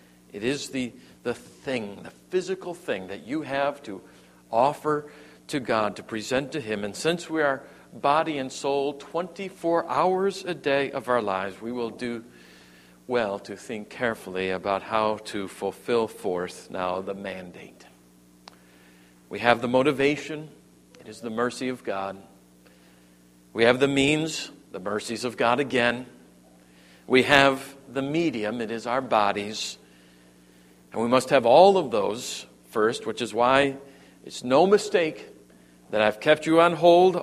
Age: 50-69